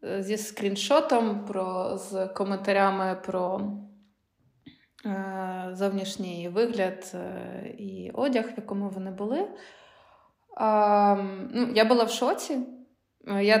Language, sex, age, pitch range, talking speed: Ukrainian, female, 20-39, 190-215 Hz, 100 wpm